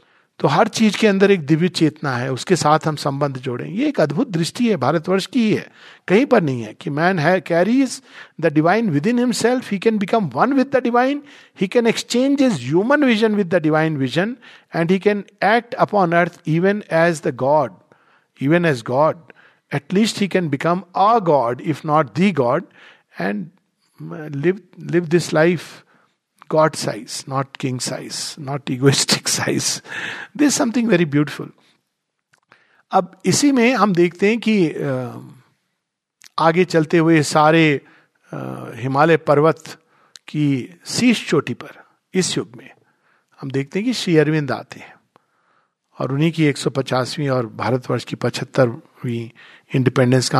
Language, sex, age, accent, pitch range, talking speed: Hindi, male, 50-69, native, 145-205 Hz, 155 wpm